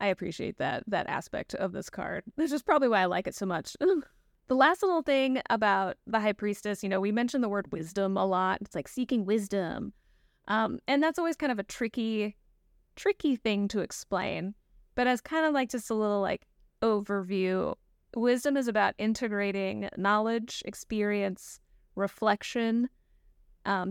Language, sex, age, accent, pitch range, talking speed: English, female, 20-39, American, 195-235 Hz, 170 wpm